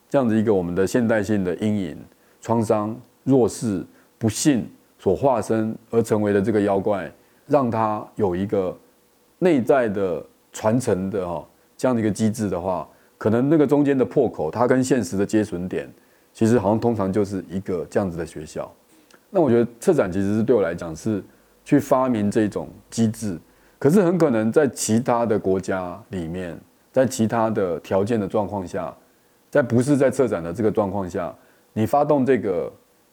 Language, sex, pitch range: Chinese, male, 100-125 Hz